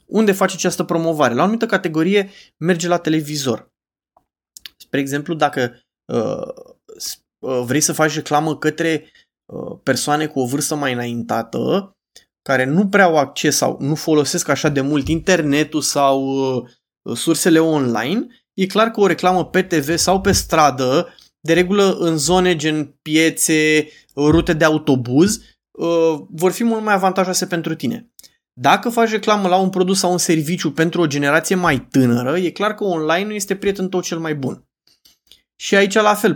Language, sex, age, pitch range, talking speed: Romanian, male, 20-39, 145-185 Hz, 155 wpm